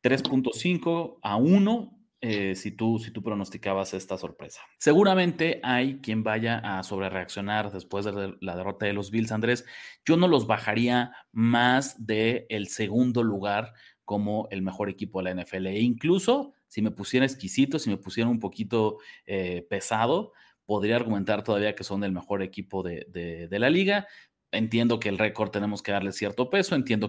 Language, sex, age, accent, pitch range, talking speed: Spanish, male, 30-49, Mexican, 100-130 Hz, 170 wpm